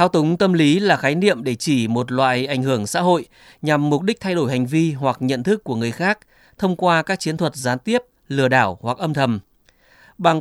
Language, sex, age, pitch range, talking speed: Vietnamese, male, 20-39, 125-165 Hz, 235 wpm